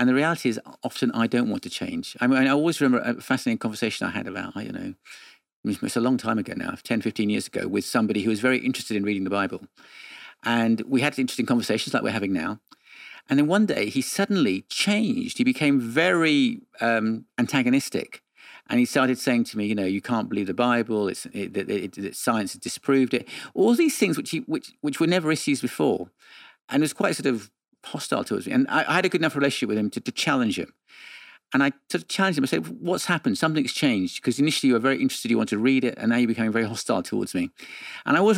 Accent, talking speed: British, 240 wpm